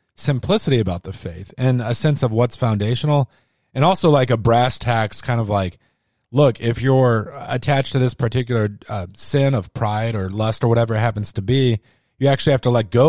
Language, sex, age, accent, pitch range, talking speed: English, male, 30-49, American, 110-130 Hz, 200 wpm